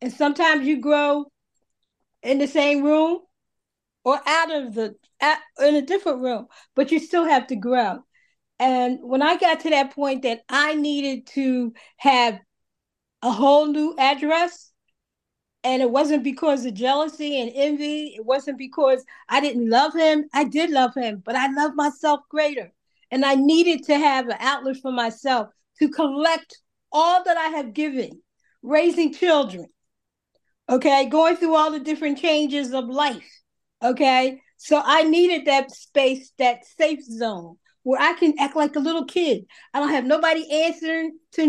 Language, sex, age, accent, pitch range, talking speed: English, female, 40-59, American, 265-315 Hz, 160 wpm